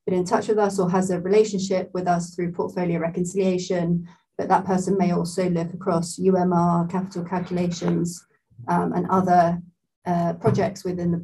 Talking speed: 160 wpm